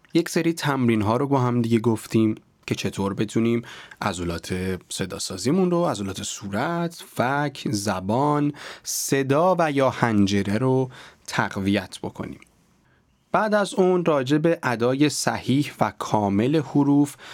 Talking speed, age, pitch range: 125 wpm, 30-49, 105-145 Hz